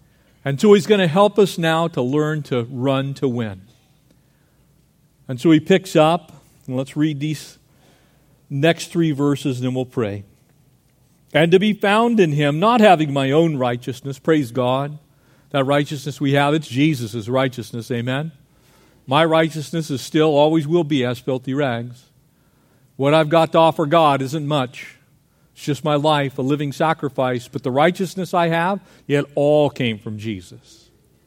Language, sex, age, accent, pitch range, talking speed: English, male, 50-69, American, 130-155 Hz, 165 wpm